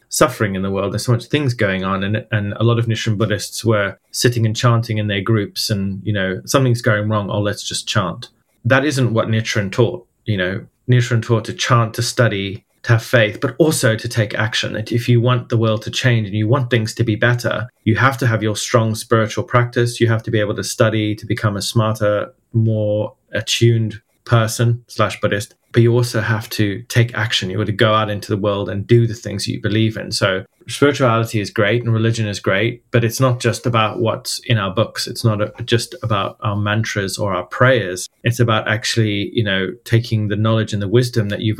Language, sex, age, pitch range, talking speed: English, male, 30-49, 105-120 Hz, 225 wpm